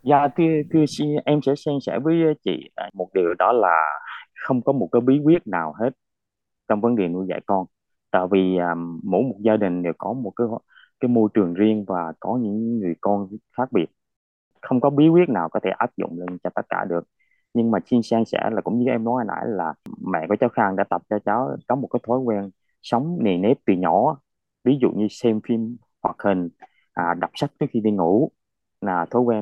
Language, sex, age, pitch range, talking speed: Vietnamese, male, 20-39, 95-125 Hz, 225 wpm